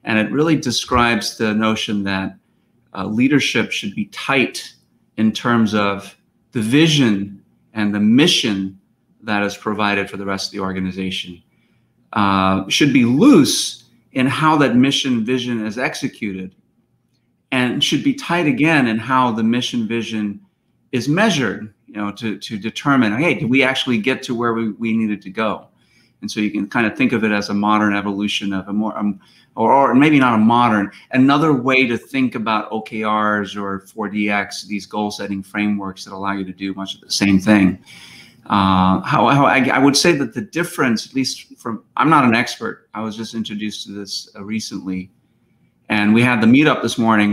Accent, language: American, English